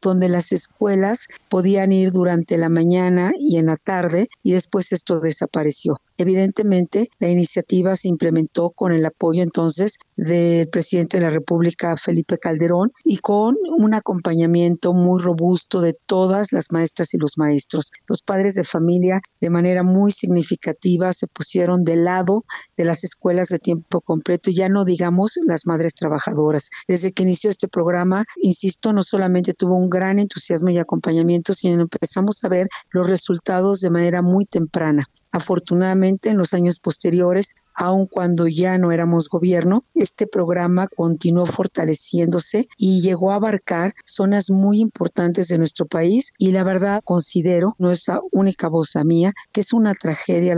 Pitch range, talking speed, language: 170-190 Hz, 160 wpm, Spanish